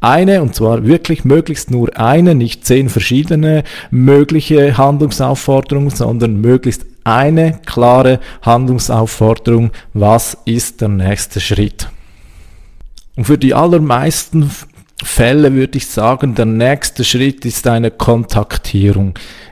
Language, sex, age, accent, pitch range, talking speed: German, male, 40-59, Austrian, 115-140 Hz, 110 wpm